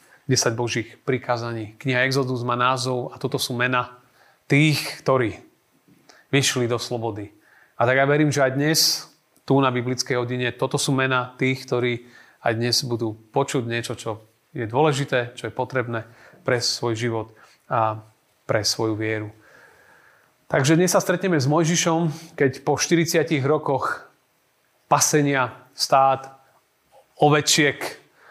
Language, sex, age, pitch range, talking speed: Slovak, male, 30-49, 120-145 Hz, 135 wpm